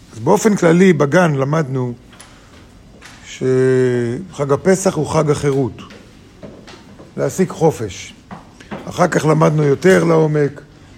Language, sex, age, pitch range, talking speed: Hebrew, male, 50-69, 135-170 Hz, 95 wpm